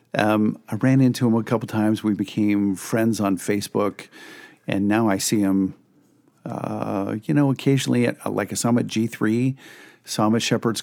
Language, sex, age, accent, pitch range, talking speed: English, male, 50-69, American, 95-115 Hz, 165 wpm